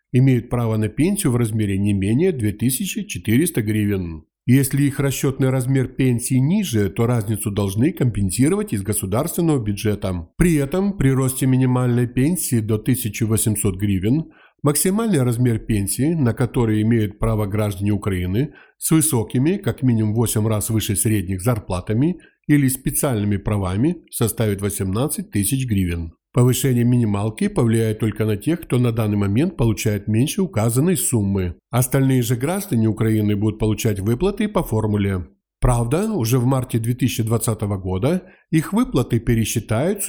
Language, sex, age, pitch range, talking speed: Ukrainian, male, 50-69, 105-135 Hz, 135 wpm